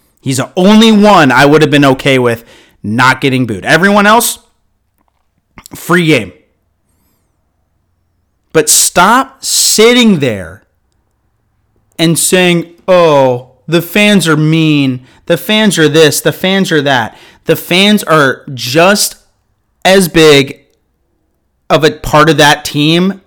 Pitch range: 115-175 Hz